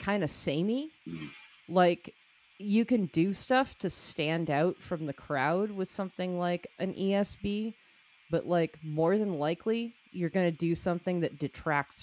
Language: English